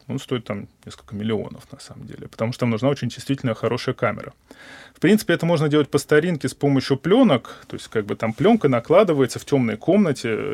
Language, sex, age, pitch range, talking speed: Russian, male, 20-39, 120-145 Hz, 200 wpm